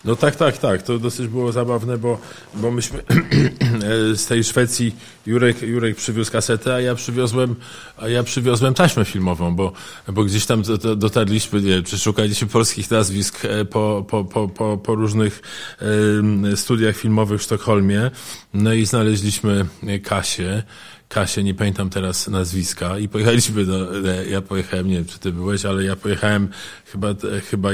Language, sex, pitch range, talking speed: Polish, male, 95-110 Hz, 150 wpm